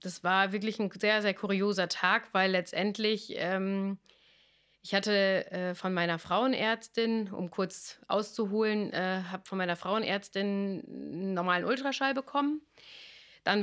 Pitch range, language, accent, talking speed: 175-210 Hz, German, German, 130 wpm